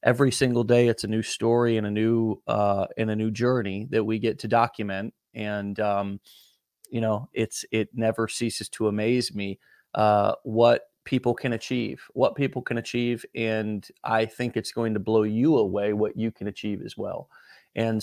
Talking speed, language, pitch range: 185 wpm, English, 105-125 Hz